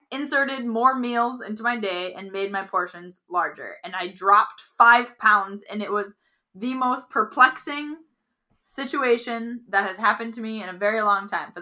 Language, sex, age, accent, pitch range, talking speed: English, female, 10-29, American, 200-270 Hz, 175 wpm